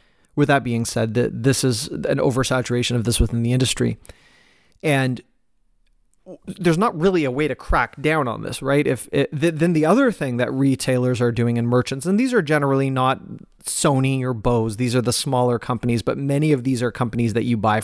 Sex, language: male, English